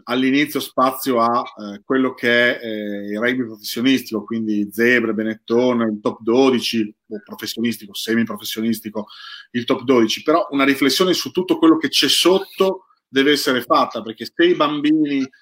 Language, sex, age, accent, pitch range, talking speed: Italian, male, 40-59, native, 125-160 Hz, 155 wpm